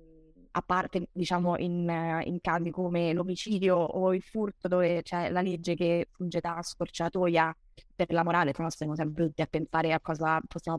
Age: 20-39